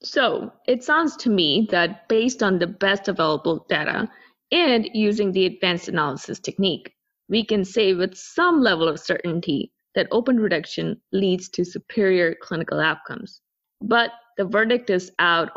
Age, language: 20-39, English